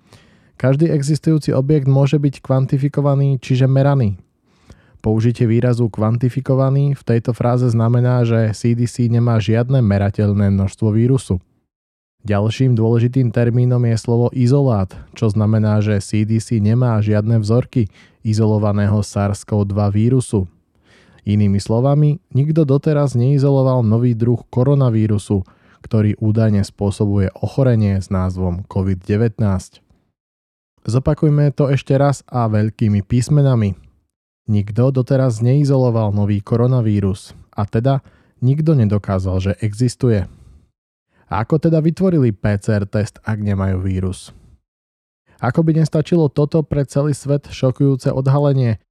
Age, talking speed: 20-39, 110 wpm